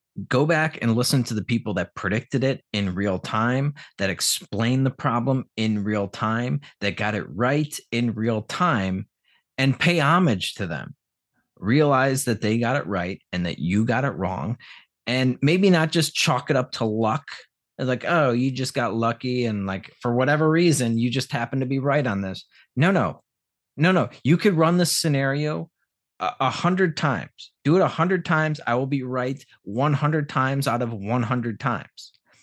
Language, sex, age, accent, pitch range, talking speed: English, male, 30-49, American, 110-140 Hz, 185 wpm